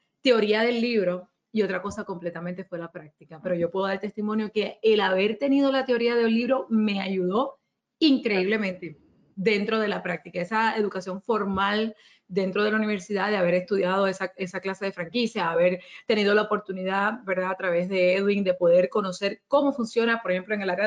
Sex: female